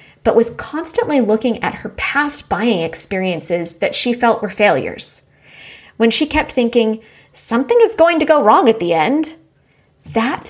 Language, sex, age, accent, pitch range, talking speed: English, female, 30-49, American, 205-285 Hz, 160 wpm